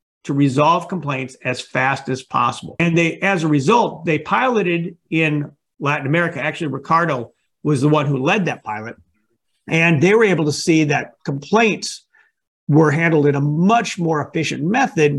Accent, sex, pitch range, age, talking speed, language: American, male, 145-185 Hz, 50-69, 165 wpm, English